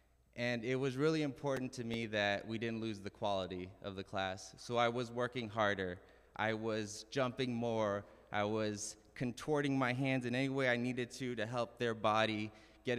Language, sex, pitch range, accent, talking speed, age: English, male, 95-115 Hz, American, 190 wpm, 20-39